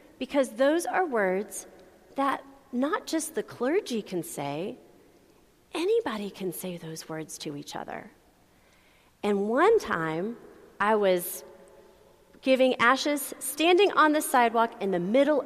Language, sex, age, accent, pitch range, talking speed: English, female, 40-59, American, 195-285 Hz, 130 wpm